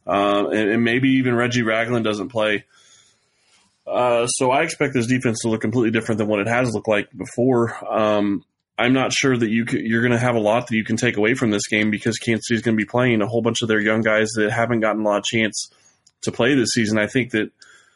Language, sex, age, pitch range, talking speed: English, male, 20-39, 110-125 Hz, 245 wpm